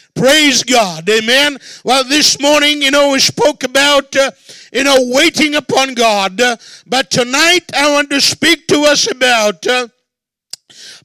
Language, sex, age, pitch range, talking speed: English, male, 50-69, 265-325 Hz, 150 wpm